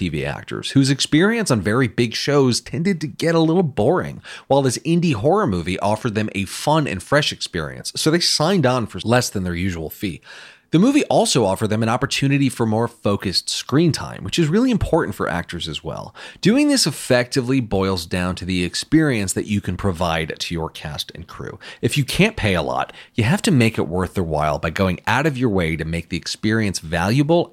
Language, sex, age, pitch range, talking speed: English, male, 30-49, 90-140 Hz, 215 wpm